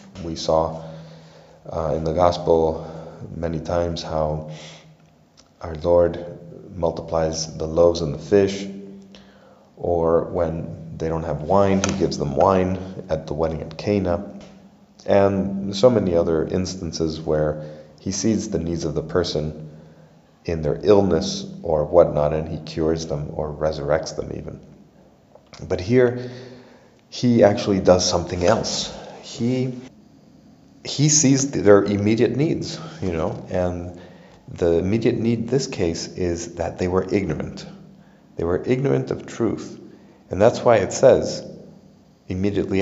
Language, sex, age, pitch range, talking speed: English, male, 30-49, 80-115 Hz, 135 wpm